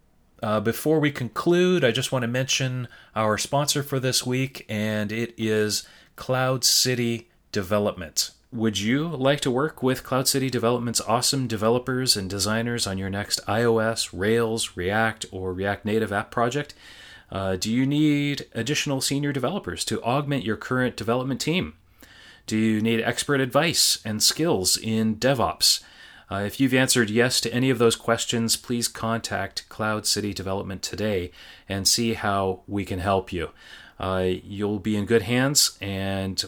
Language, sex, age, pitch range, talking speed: English, male, 30-49, 100-125 Hz, 160 wpm